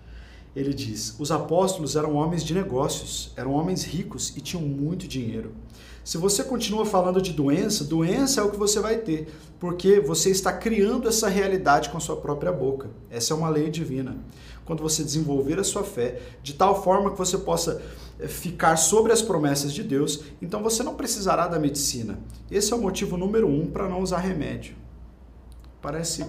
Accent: Brazilian